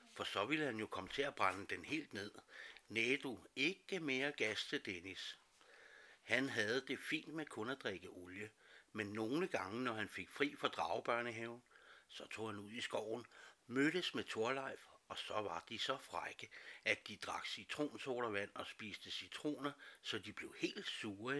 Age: 60-79